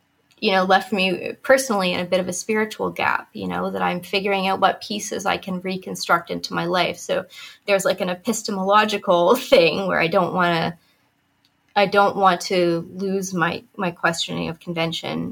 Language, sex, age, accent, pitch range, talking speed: English, female, 20-39, American, 175-205 Hz, 185 wpm